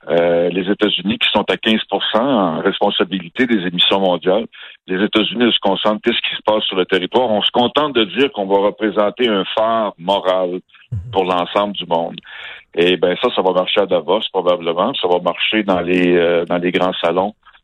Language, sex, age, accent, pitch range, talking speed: French, male, 60-79, French, 90-110 Hz, 195 wpm